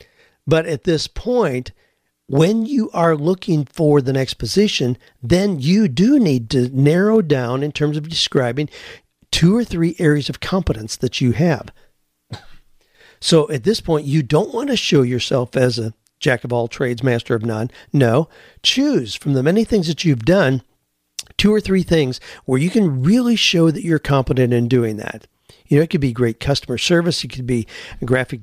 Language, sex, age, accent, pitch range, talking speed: English, male, 50-69, American, 125-175 Hz, 185 wpm